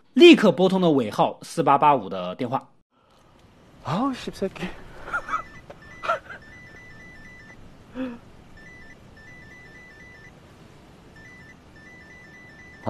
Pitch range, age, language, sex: 180-255 Hz, 30-49, Chinese, male